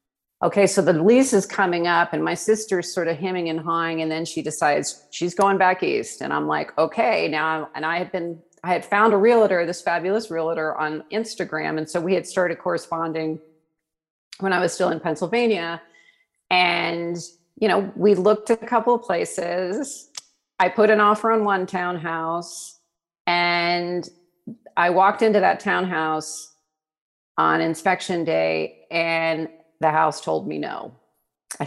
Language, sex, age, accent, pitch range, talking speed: English, female, 40-59, American, 155-185 Hz, 165 wpm